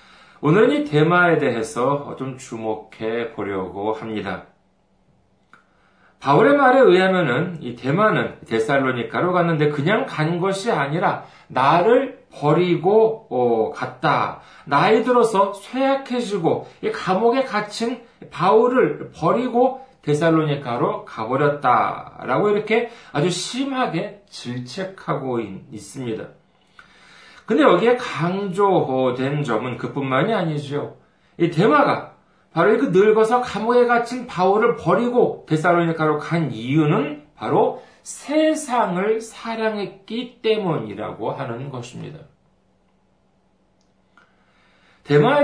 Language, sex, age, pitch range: Korean, male, 40-59, 135-215 Hz